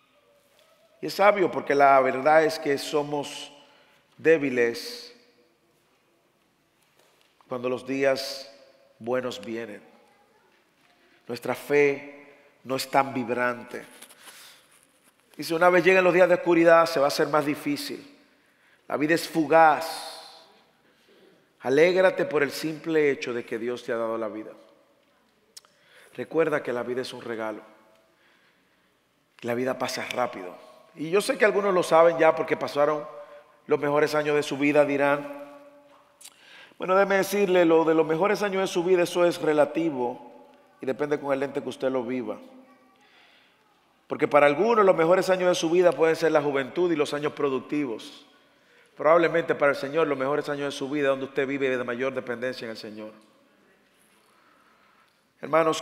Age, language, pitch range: 40-59, English, 130-165 Hz